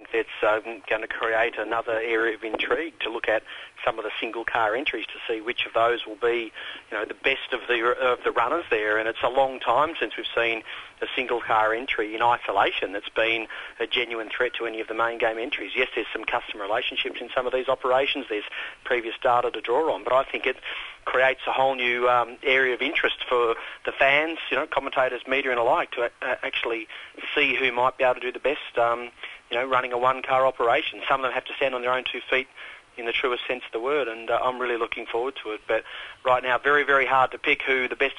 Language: English